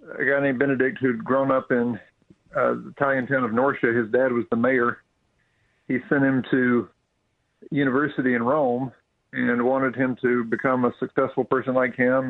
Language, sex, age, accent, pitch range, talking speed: English, male, 50-69, American, 120-140 Hz, 175 wpm